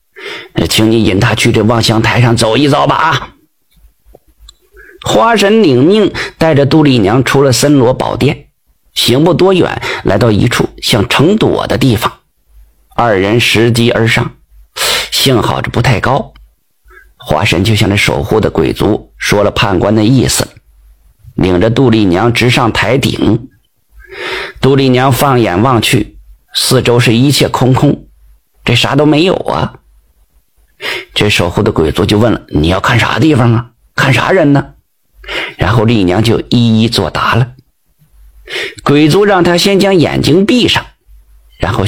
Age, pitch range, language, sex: 50-69, 105-145 Hz, Chinese, male